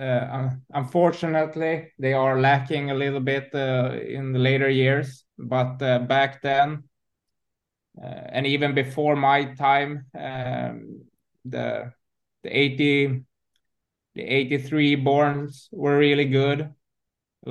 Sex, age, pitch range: male, 20-39, 125-145 Hz